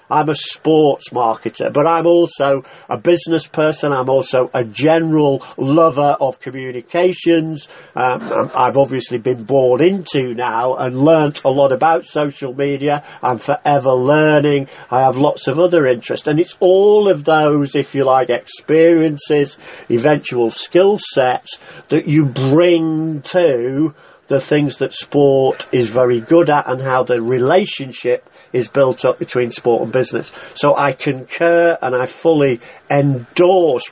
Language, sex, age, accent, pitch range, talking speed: English, male, 50-69, British, 125-160 Hz, 145 wpm